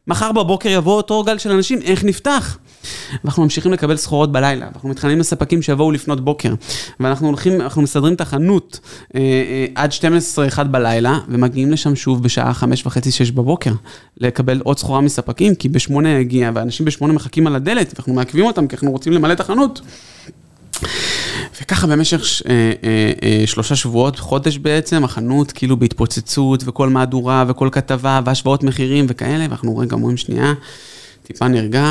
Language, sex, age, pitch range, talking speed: Hebrew, male, 20-39, 120-150 Hz, 160 wpm